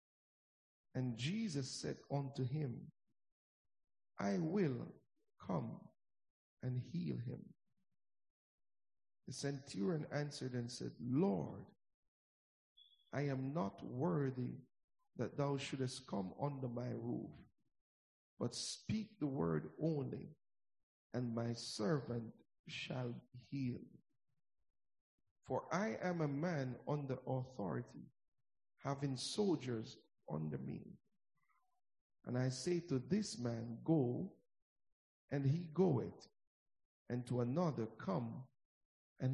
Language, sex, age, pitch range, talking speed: English, male, 50-69, 120-150 Hz, 100 wpm